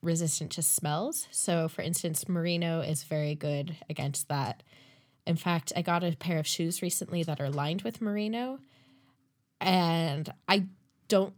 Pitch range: 145-185 Hz